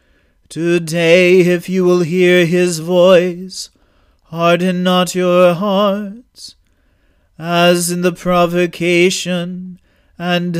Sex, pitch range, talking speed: male, 145-180 Hz, 90 wpm